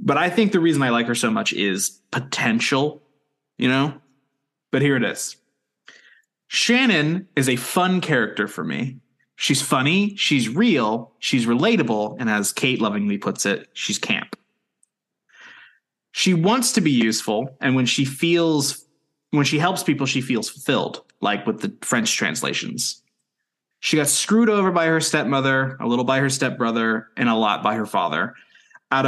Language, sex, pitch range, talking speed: English, male, 120-155 Hz, 165 wpm